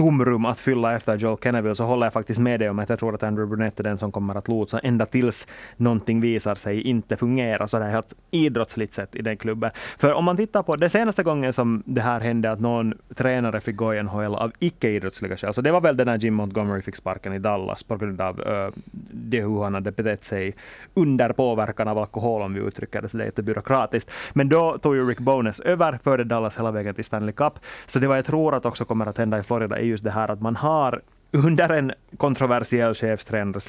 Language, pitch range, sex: Swedish, 105-130 Hz, male